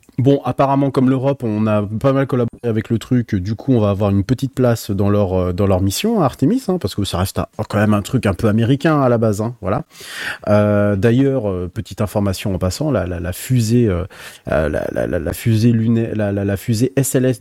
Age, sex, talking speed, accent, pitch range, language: 30-49, male, 235 wpm, French, 95-125 Hz, French